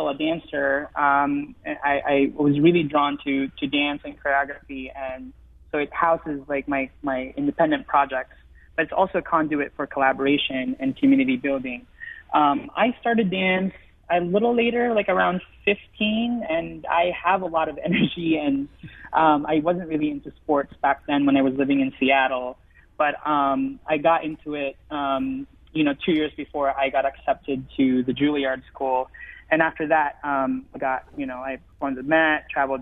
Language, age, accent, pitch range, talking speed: English, 20-39, American, 135-180 Hz, 175 wpm